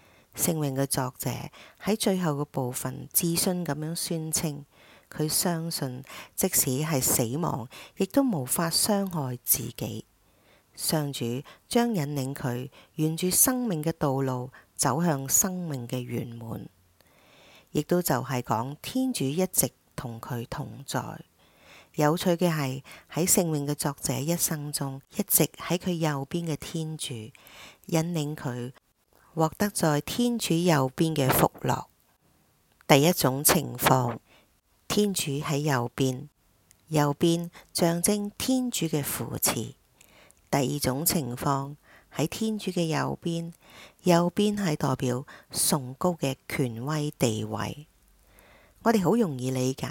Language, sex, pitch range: English, female, 130-170 Hz